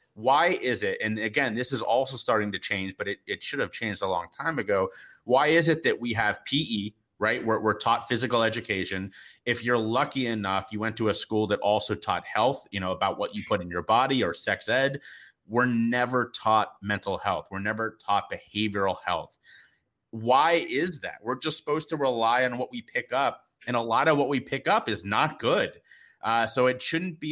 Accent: American